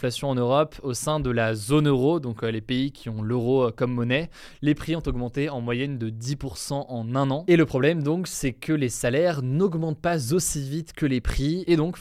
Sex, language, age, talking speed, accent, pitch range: male, French, 20-39, 220 wpm, French, 120-150 Hz